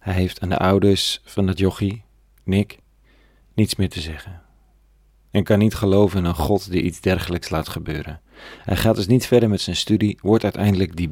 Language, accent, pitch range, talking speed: Dutch, Dutch, 85-105 Hz, 195 wpm